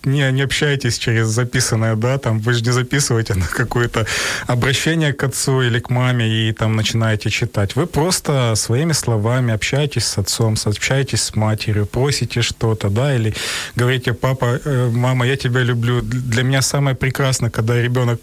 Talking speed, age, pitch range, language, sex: 160 wpm, 30-49, 120-150 Hz, Ukrainian, male